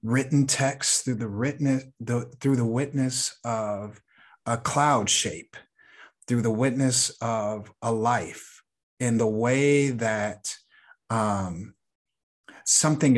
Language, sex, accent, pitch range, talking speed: English, male, American, 115-140 Hz, 95 wpm